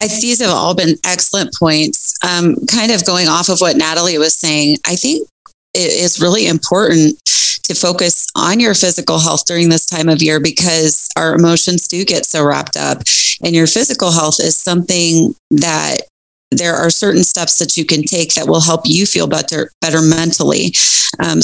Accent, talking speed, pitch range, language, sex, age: American, 180 wpm, 155-185 Hz, English, female, 30-49